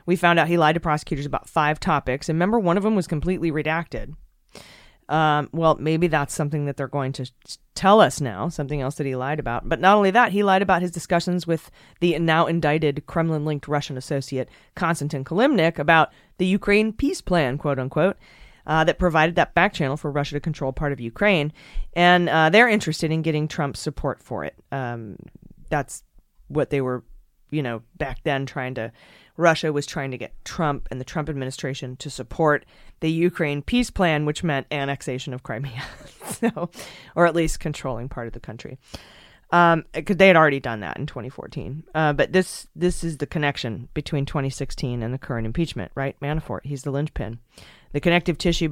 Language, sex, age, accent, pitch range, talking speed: English, female, 30-49, American, 135-165 Hz, 190 wpm